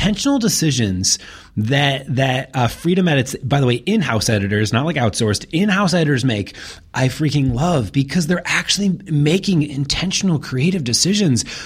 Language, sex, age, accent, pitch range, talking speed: English, male, 30-49, American, 130-175 Hz, 145 wpm